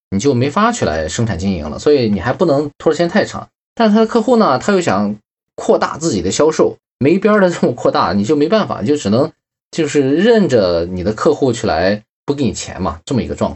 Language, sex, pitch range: Chinese, male, 110-180 Hz